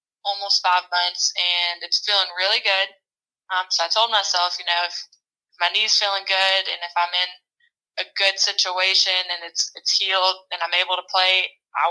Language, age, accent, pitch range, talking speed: English, 20-39, American, 180-200 Hz, 190 wpm